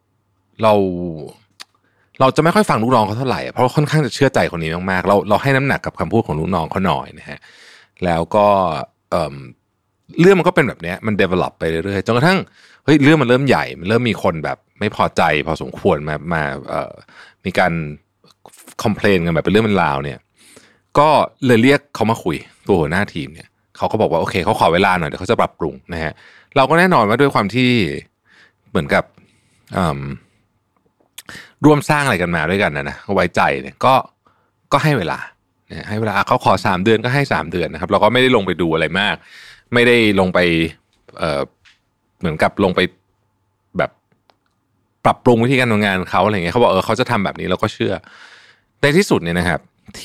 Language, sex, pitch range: Thai, male, 90-120 Hz